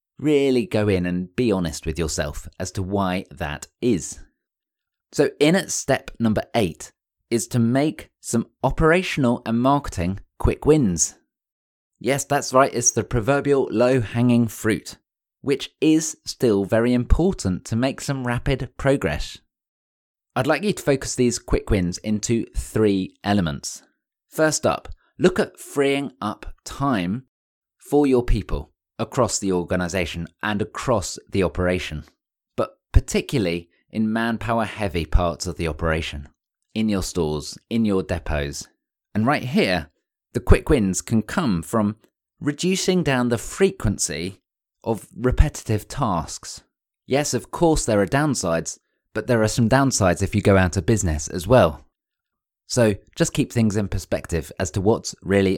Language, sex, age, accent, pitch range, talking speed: English, male, 20-39, British, 90-125 Hz, 145 wpm